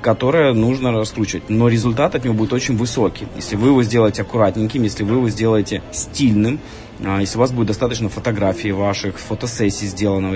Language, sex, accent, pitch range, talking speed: Russian, male, native, 105-125 Hz, 170 wpm